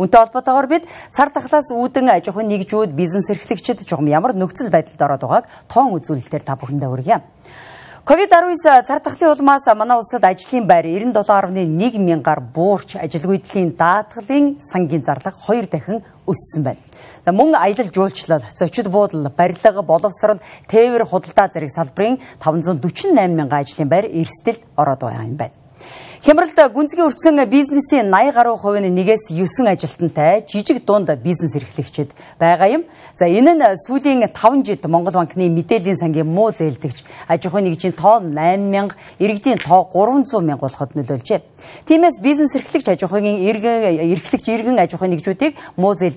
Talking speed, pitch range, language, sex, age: 100 wpm, 165-230 Hz, English, female, 40-59